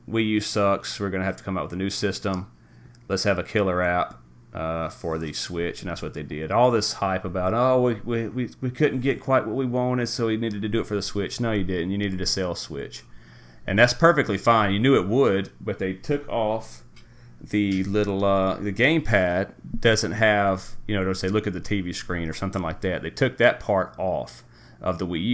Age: 30-49